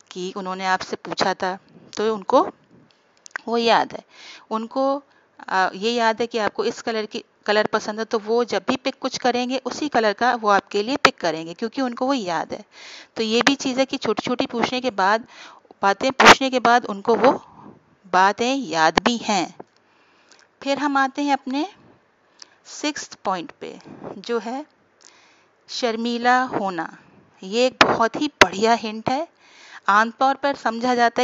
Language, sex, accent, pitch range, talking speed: Hindi, female, native, 210-270 Hz, 165 wpm